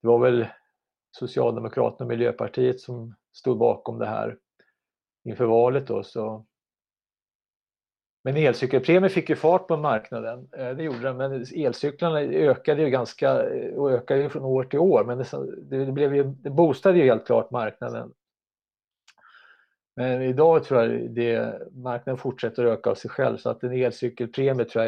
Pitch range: 120-165 Hz